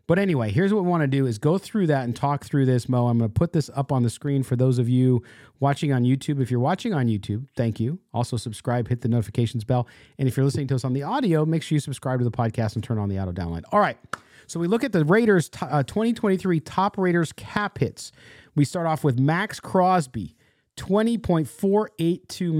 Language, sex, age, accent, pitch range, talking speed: English, male, 40-59, American, 130-185 Hz, 240 wpm